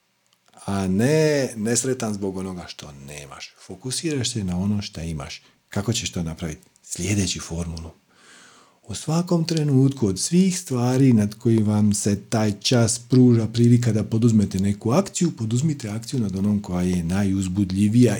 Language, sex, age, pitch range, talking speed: Croatian, male, 40-59, 100-140 Hz, 145 wpm